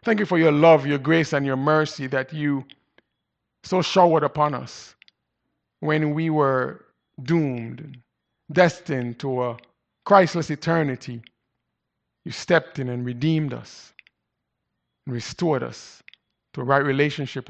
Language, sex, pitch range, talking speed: English, male, 125-160 Hz, 125 wpm